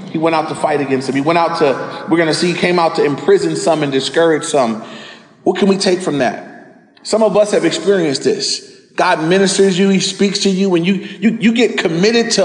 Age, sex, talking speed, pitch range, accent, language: 30-49, male, 235 wpm, 155-200 Hz, American, English